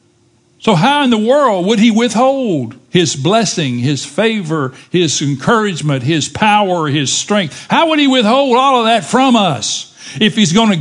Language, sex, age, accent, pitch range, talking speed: English, male, 60-79, American, 125-200 Hz, 170 wpm